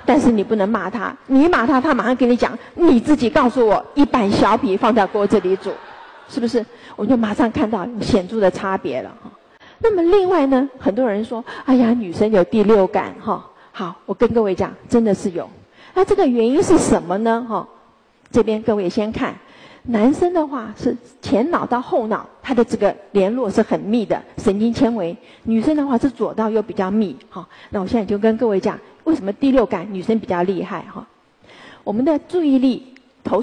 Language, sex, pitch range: Chinese, female, 210-280 Hz